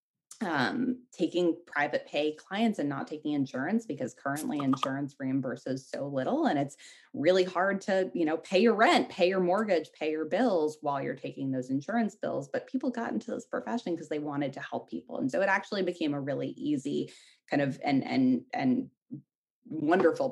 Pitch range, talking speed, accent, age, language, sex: 140-195 Hz, 190 wpm, American, 20-39, English, female